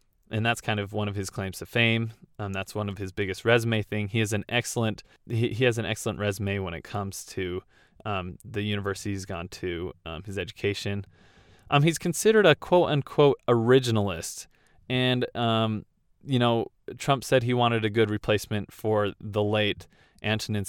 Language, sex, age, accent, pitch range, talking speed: English, male, 20-39, American, 100-120 Hz, 175 wpm